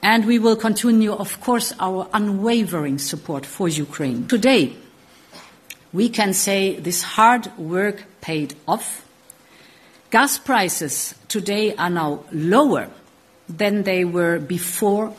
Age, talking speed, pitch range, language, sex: 50-69, 120 wpm, 115-185 Hz, Persian, female